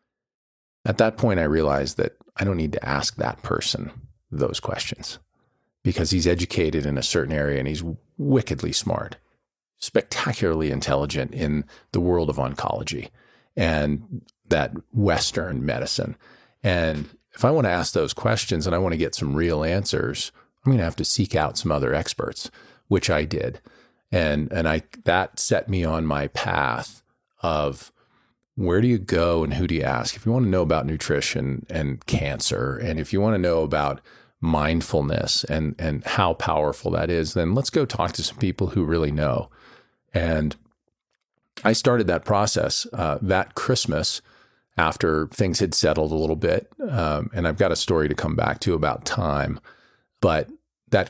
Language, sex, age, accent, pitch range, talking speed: English, male, 40-59, American, 75-95 Hz, 175 wpm